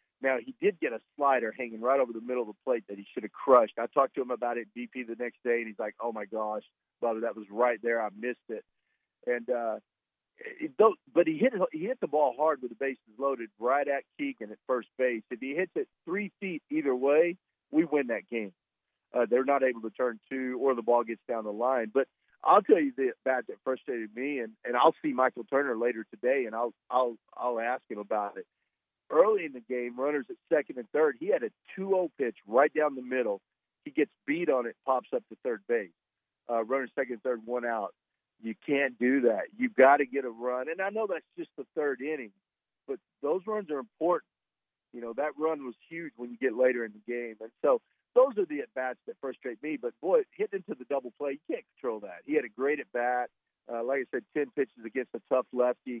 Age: 40-59